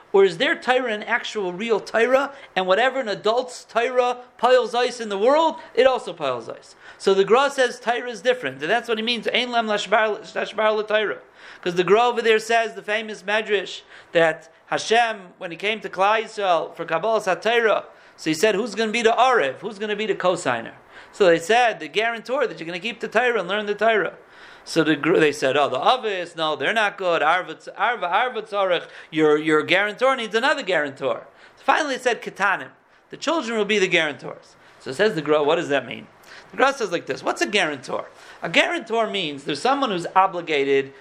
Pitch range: 195-265 Hz